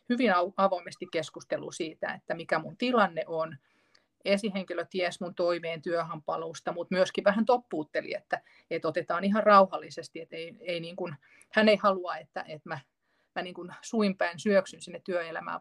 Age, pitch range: 30-49, 165-200 Hz